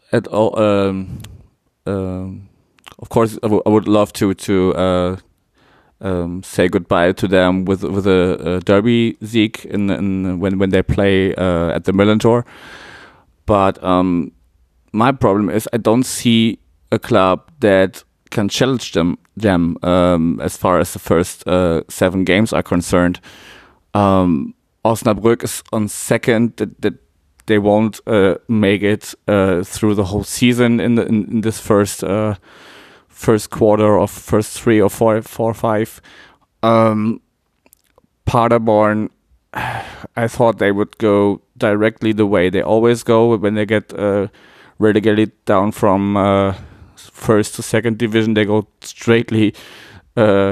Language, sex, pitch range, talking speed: German, male, 95-115 Hz, 150 wpm